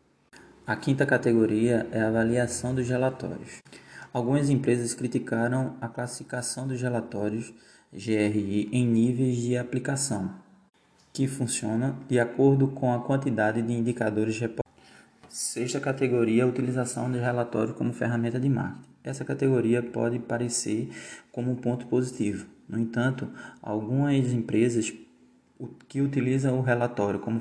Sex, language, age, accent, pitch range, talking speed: male, Portuguese, 20-39, Brazilian, 110-130 Hz, 125 wpm